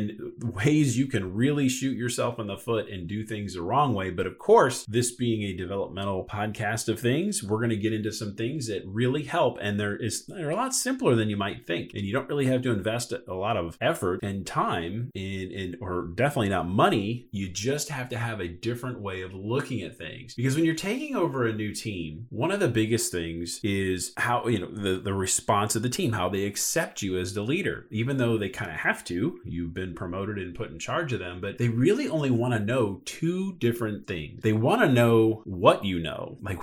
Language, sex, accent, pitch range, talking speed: English, male, American, 95-120 Hz, 230 wpm